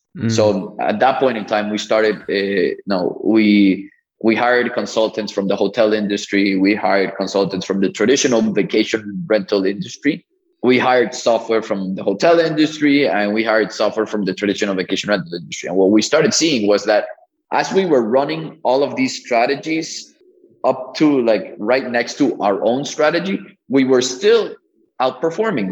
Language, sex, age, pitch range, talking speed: English, male, 20-39, 100-125 Hz, 170 wpm